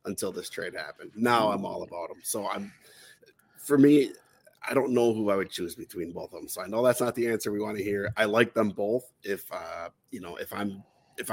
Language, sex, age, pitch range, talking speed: English, male, 30-49, 105-125 Hz, 245 wpm